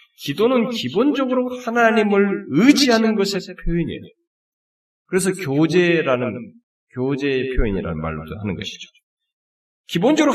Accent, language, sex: native, Korean, male